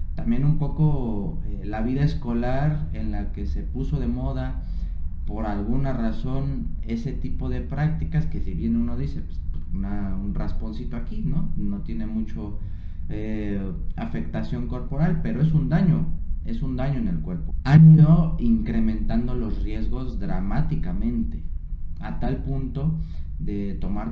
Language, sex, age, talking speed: Spanish, male, 30-49, 145 wpm